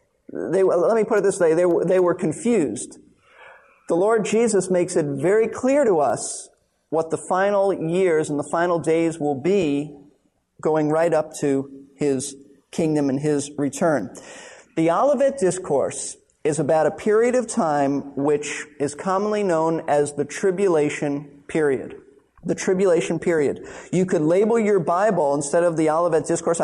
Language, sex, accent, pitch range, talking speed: English, male, American, 150-195 Hz, 155 wpm